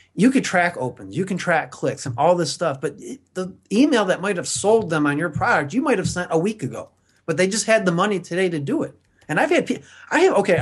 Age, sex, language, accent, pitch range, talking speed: 30-49, male, English, American, 135-180 Hz, 265 wpm